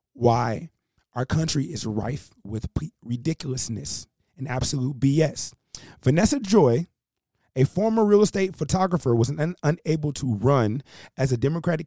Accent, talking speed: American, 120 wpm